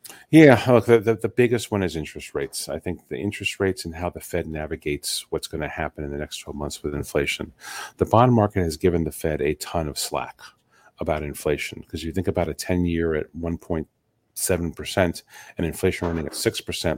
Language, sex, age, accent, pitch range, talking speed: English, male, 40-59, American, 80-95 Hz, 195 wpm